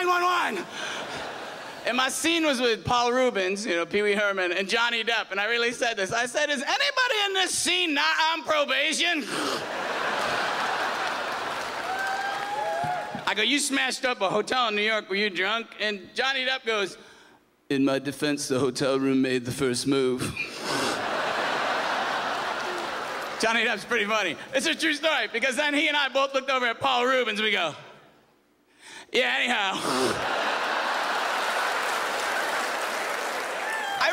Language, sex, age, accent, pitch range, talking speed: English, male, 40-59, American, 215-310 Hz, 140 wpm